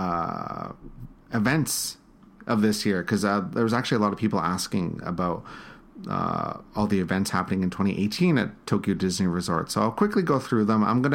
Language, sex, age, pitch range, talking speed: English, male, 30-49, 100-120 Hz, 185 wpm